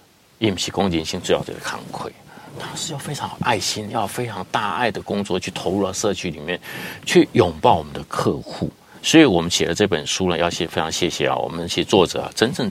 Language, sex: Chinese, male